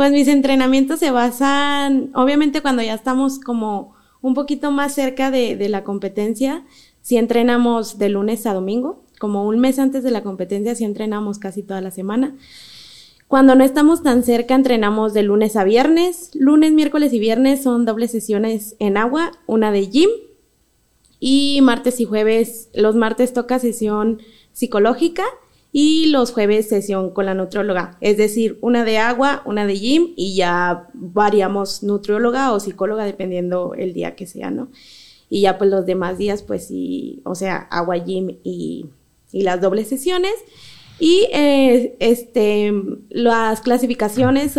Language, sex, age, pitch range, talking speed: Spanish, female, 20-39, 205-270 Hz, 155 wpm